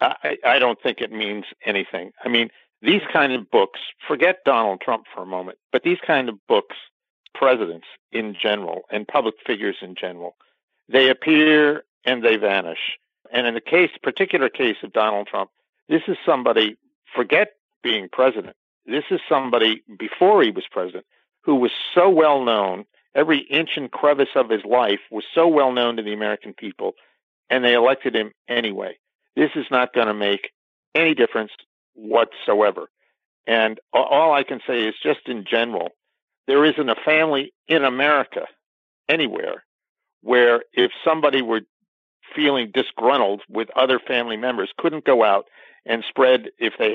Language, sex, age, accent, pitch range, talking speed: English, male, 50-69, American, 105-145 Hz, 160 wpm